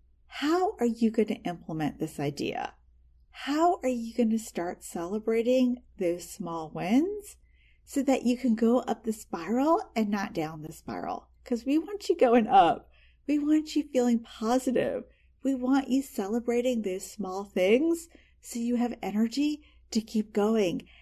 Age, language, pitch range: 40-59, English, 190-255 Hz